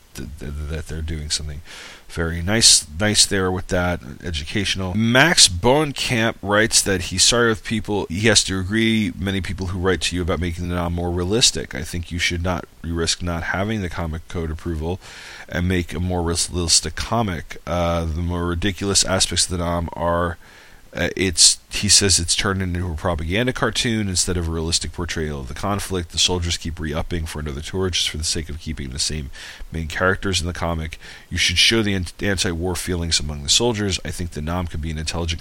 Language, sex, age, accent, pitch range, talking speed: English, male, 40-59, American, 80-95 Hz, 200 wpm